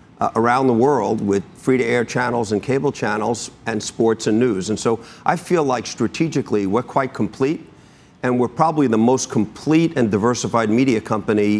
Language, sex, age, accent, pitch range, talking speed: English, male, 50-69, American, 105-130 Hz, 180 wpm